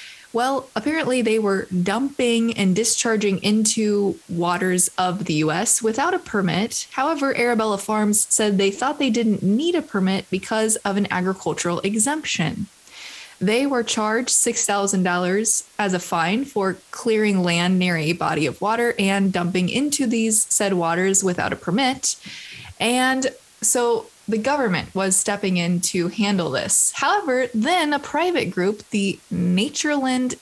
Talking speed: 140 wpm